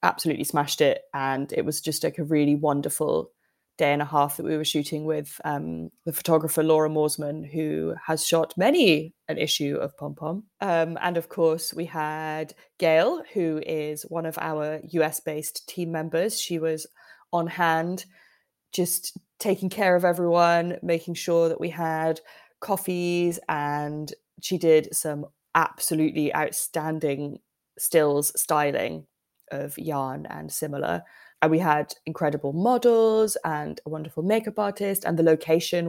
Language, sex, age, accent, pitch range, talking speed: English, female, 20-39, British, 150-180 Hz, 150 wpm